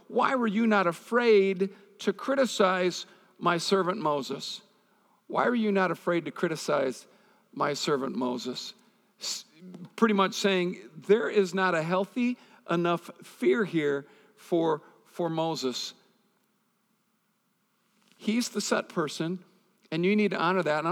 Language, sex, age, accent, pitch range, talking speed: English, male, 50-69, American, 185-215 Hz, 130 wpm